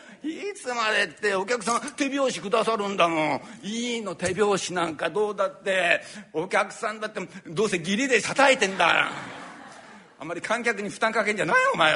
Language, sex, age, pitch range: Japanese, male, 60-79, 150-225 Hz